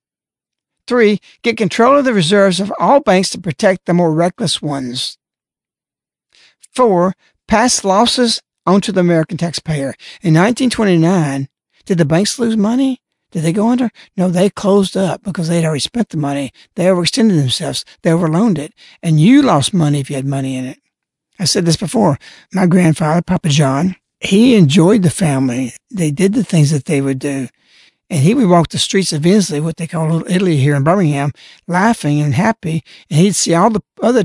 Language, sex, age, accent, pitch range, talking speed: English, male, 60-79, American, 160-210 Hz, 185 wpm